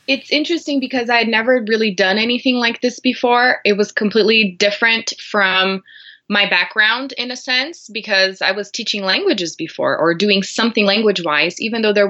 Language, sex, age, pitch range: English, female, 20-39, 185-245 Hz